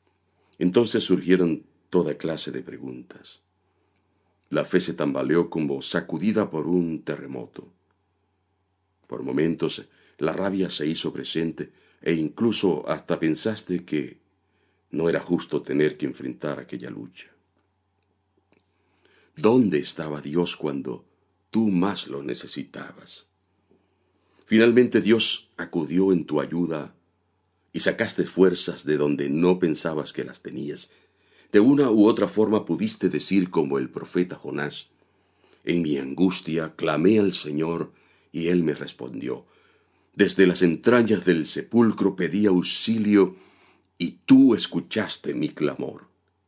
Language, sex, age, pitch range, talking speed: Spanish, male, 50-69, 85-100 Hz, 120 wpm